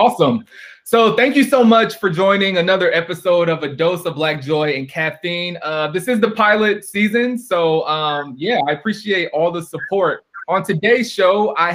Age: 20-39